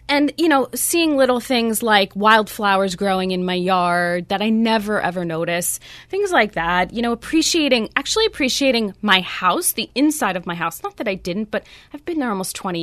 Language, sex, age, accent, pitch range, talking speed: English, female, 20-39, American, 185-245 Hz, 195 wpm